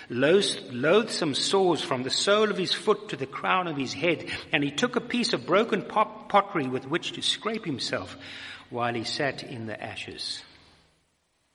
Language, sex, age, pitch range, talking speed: English, male, 60-79, 145-195 Hz, 170 wpm